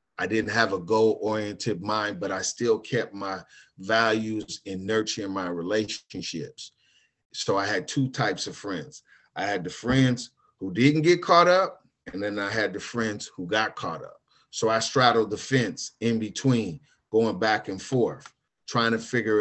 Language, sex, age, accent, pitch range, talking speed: English, male, 40-59, American, 100-115 Hz, 175 wpm